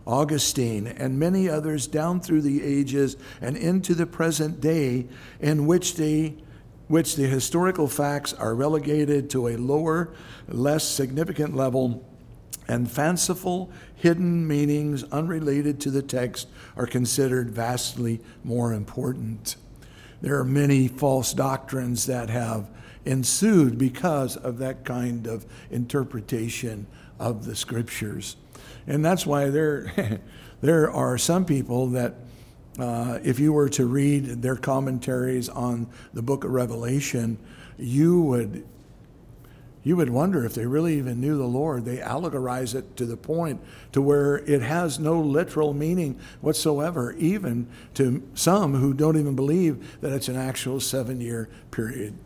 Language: English